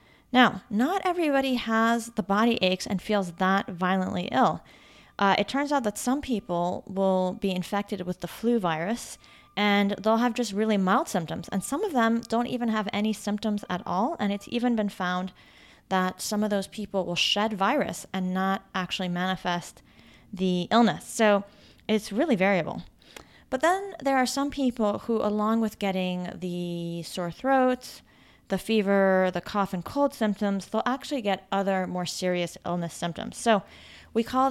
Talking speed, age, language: 170 wpm, 30-49, English